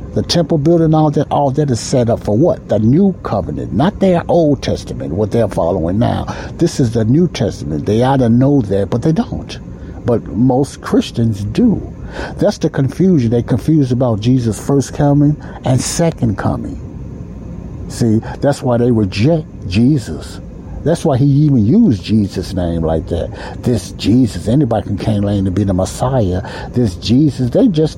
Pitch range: 115-180 Hz